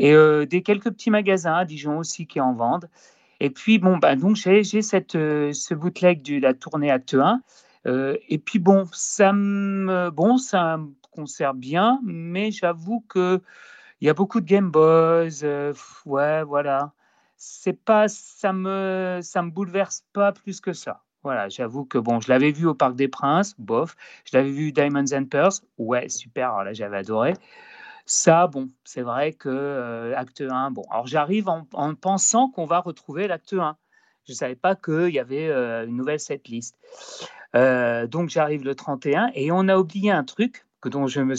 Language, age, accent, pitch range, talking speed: French, 40-59, French, 140-195 Hz, 190 wpm